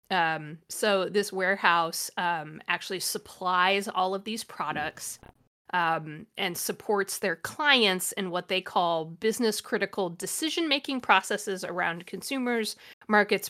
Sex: female